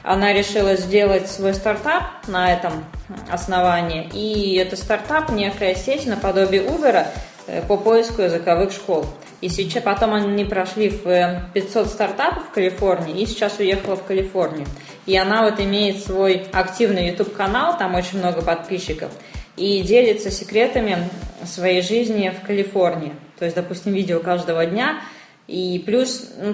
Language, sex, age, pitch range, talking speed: Russian, female, 20-39, 180-215 Hz, 140 wpm